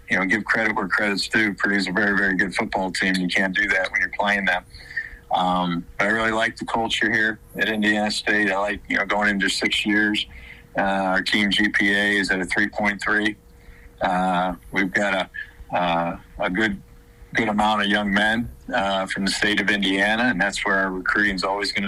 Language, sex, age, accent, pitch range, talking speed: English, male, 40-59, American, 95-105 Hz, 200 wpm